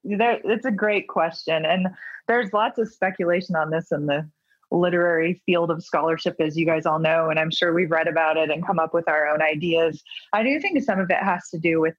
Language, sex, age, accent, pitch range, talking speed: English, female, 20-39, American, 165-215 Hz, 230 wpm